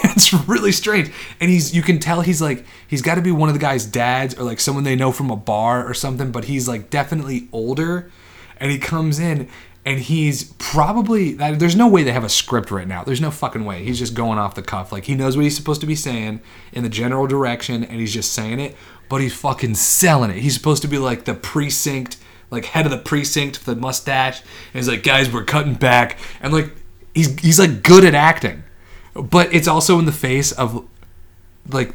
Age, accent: 30-49, American